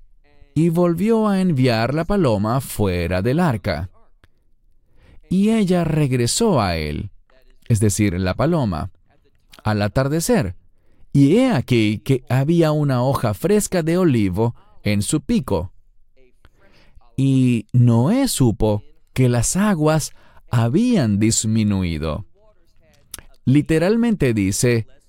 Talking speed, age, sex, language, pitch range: 105 wpm, 40-59, male, English, 100-145 Hz